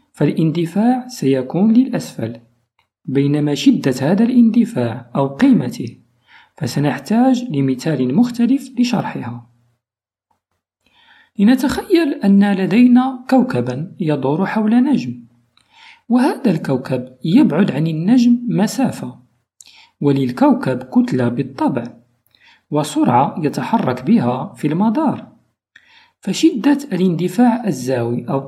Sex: male